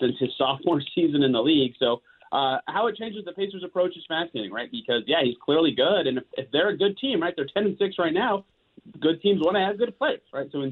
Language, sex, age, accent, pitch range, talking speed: English, male, 30-49, American, 135-195 Hz, 265 wpm